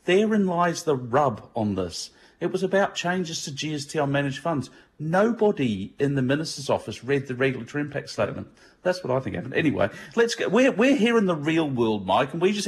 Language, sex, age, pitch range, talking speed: English, male, 40-59, 115-150 Hz, 210 wpm